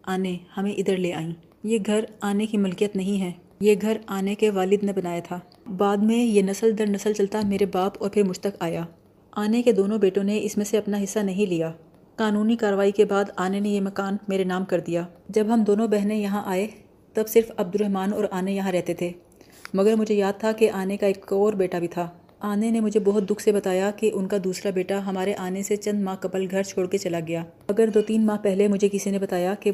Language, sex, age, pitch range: Urdu, female, 30-49, 185-215 Hz